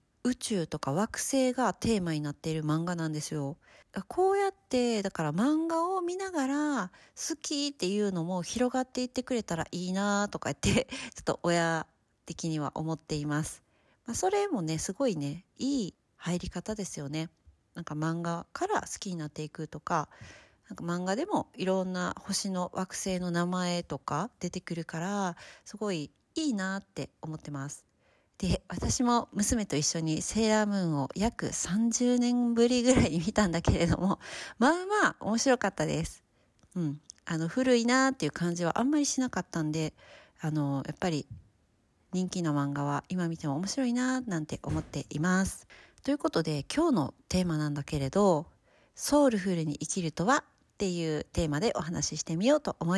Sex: female